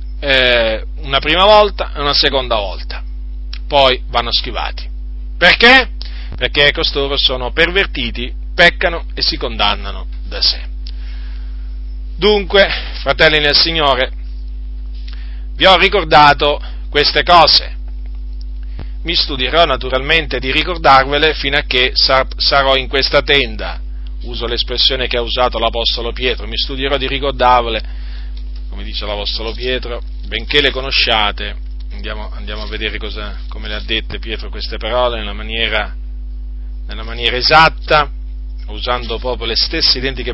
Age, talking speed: 40-59, 125 wpm